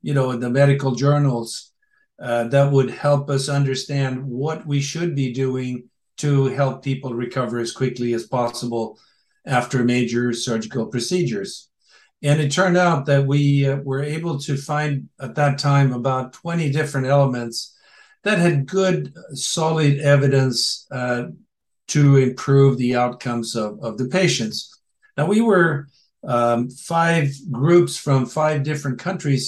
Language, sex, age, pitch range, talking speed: English, male, 60-79, 130-155 Hz, 145 wpm